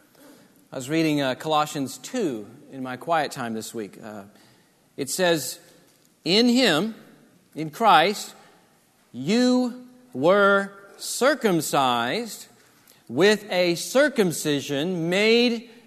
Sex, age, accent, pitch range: male, 40-59, American, 180-235 Hz